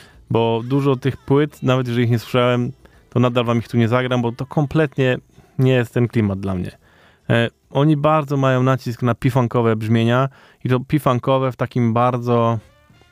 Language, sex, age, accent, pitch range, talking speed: Polish, male, 20-39, native, 115-140 Hz, 180 wpm